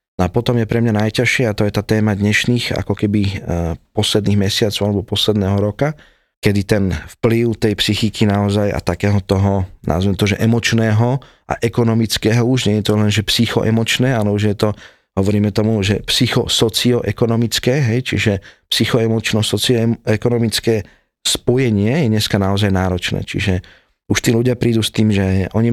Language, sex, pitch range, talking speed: Slovak, male, 100-115 Hz, 155 wpm